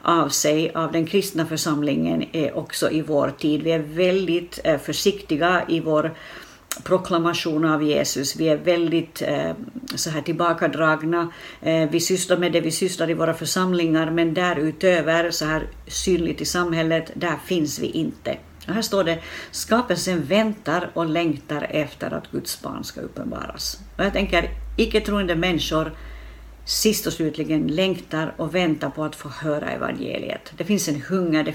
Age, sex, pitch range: 60-79, female, 155-180 Hz